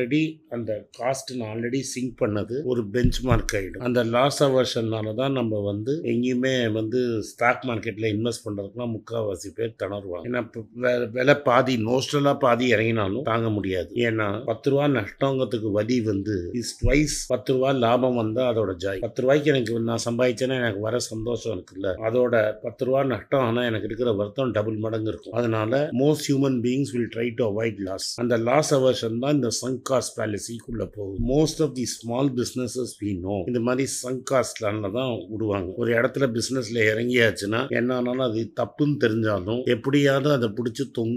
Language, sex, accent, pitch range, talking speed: Tamil, male, native, 110-130 Hz, 30 wpm